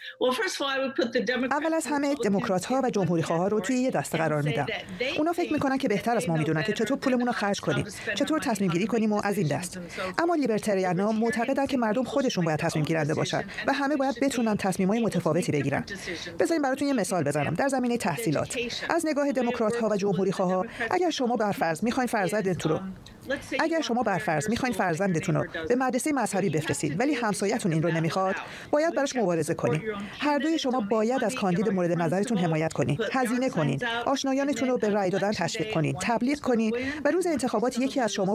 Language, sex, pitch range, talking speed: Persian, female, 180-265 Hz, 185 wpm